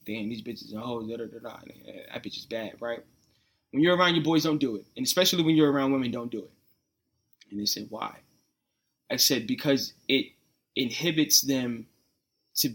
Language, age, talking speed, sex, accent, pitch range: English, 20-39, 180 wpm, male, American, 120-150 Hz